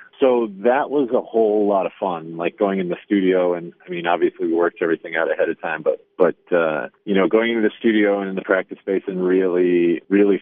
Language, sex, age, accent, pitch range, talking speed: English, male, 40-59, American, 85-105 Hz, 235 wpm